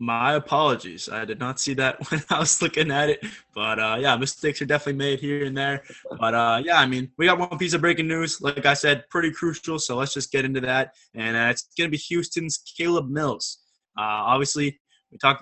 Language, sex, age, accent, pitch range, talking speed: English, male, 20-39, American, 125-150 Hz, 225 wpm